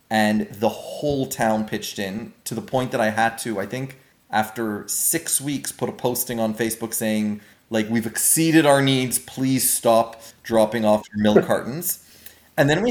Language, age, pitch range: English, 30-49, 110-130 Hz